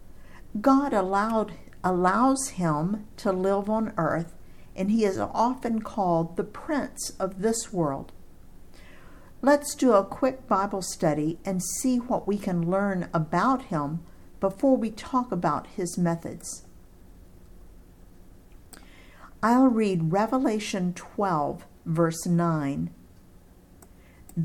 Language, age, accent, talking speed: English, 50-69, American, 105 wpm